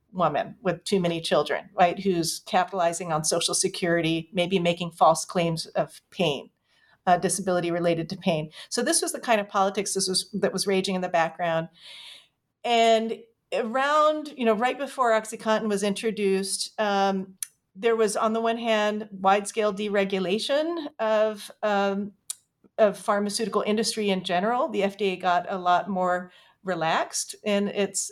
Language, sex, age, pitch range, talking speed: English, female, 40-59, 185-220 Hz, 150 wpm